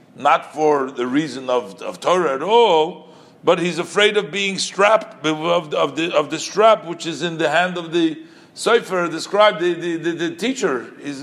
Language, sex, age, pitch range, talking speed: English, male, 50-69, 130-185 Hz, 210 wpm